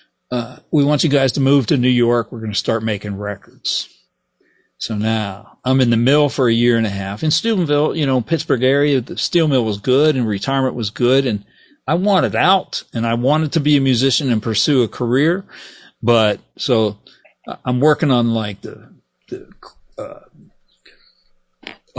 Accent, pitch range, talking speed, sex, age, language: American, 115-145 Hz, 185 wpm, male, 40-59, English